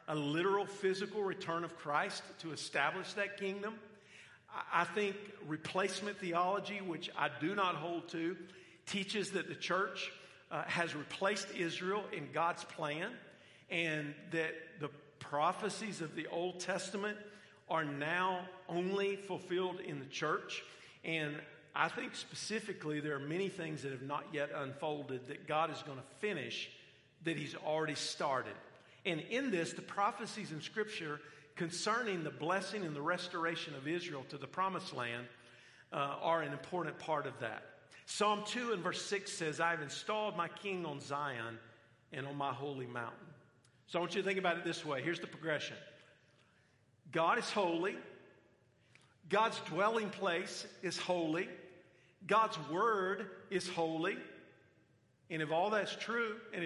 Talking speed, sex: 155 wpm, male